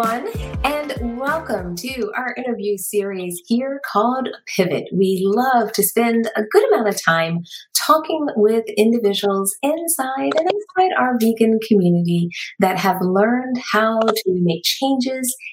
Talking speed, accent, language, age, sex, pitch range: 130 wpm, American, English, 30-49, female, 180-235 Hz